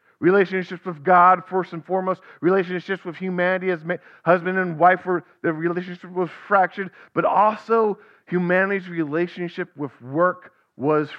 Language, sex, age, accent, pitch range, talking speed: English, male, 40-59, American, 145-185 Hz, 135 wpm